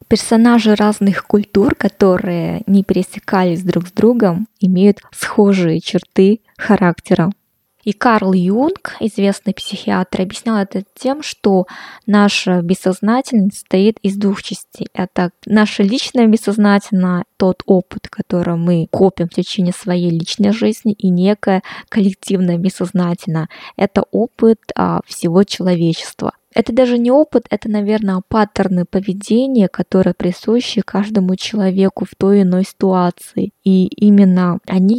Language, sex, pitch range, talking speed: Russian, female, 185-215 Hz, 120 wpm